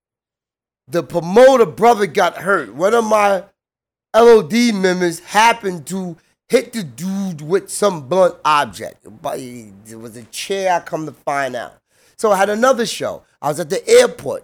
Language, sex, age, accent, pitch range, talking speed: English, male, 30-49, American, 145-195 Hz, 160 wpm